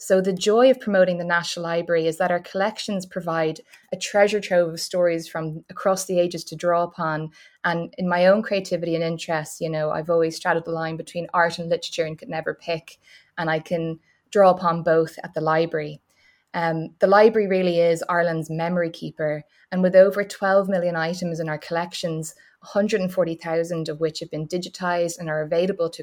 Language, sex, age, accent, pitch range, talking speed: English, female, 20-39, Irish, 165-190 Hz, 190 wpm